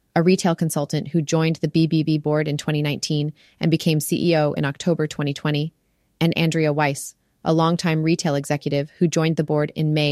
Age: 30-49